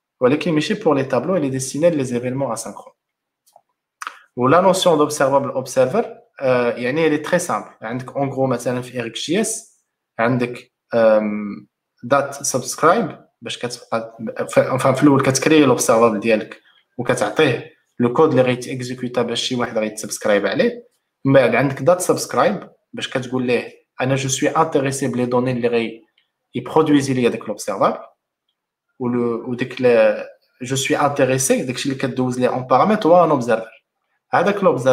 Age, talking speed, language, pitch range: 20-39, 135 wpm, Arabic, 125-160 Hz